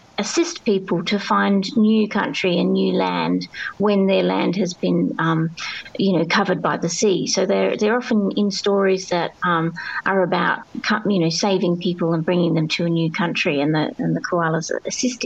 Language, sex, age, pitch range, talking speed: English, female, 30-49, 175-225 Hz, 190 wpm